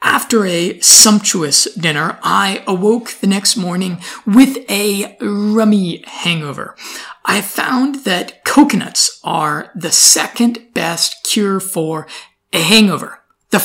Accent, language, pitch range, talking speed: American, English, 185-230 Hz, 115 wpm